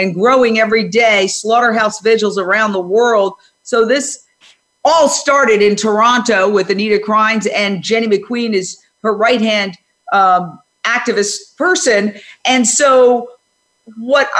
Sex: female